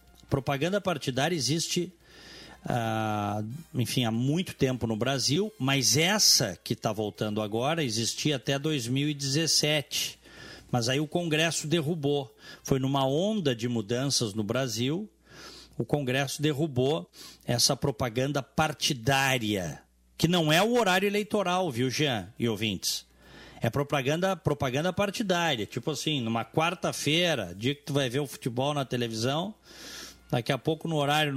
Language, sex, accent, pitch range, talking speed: Portuguese, male, Brazilian, 120-160 Hz, 130 wpm